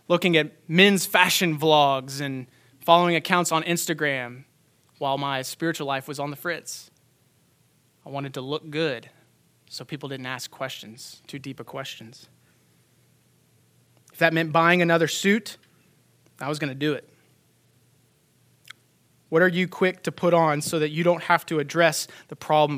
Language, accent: English, American